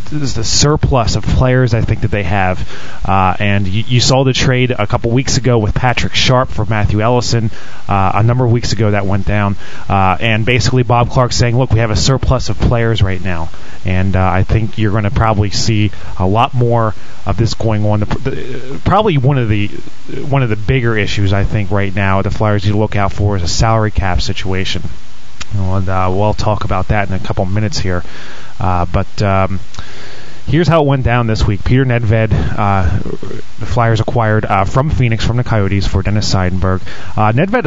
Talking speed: 205 wpm